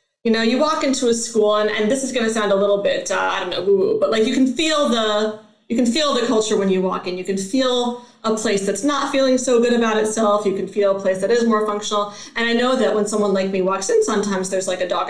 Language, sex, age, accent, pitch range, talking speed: English, female, 30-49, American, 200-255 Hz, 285 wpm